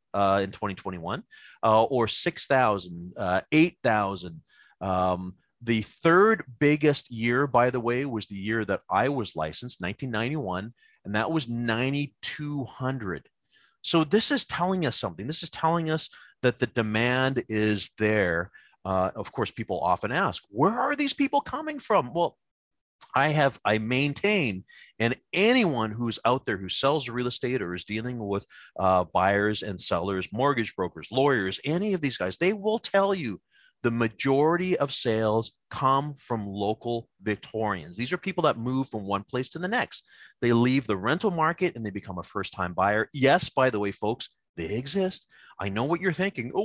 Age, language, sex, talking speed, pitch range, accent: 30-49, English, male, 165 wpm, 105-180 Hz, American